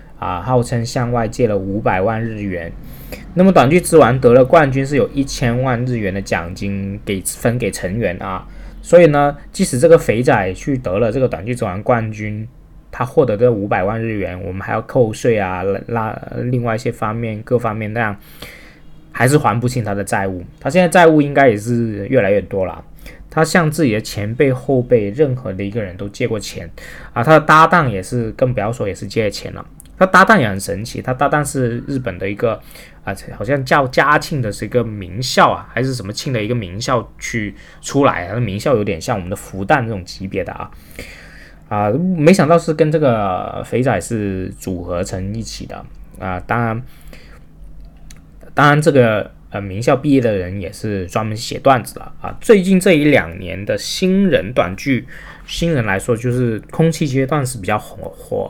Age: 20-39